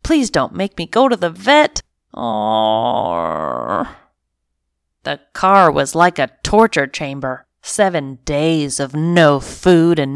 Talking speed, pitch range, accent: 125 wpm, 135-180 Hz, American